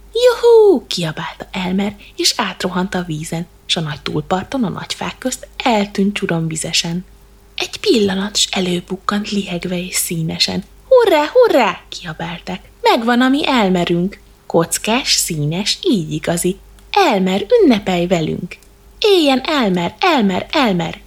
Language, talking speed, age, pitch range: Hungarian, 120 wpm, 20-39, 175-270 Hz